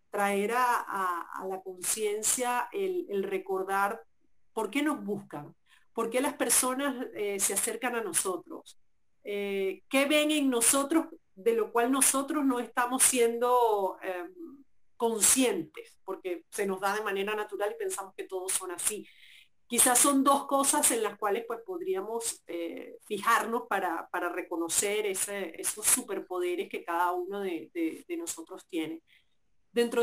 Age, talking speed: 40-59, 145 wpm